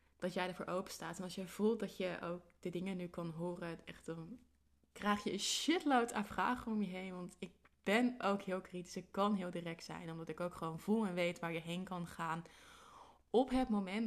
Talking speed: 230 wpm